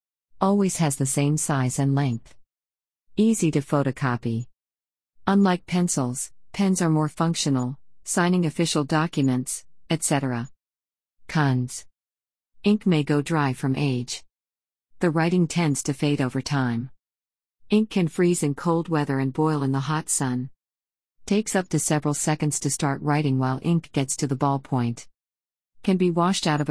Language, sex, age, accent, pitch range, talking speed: English, female, 50-69, American, 125-165 Hz, 145 wpm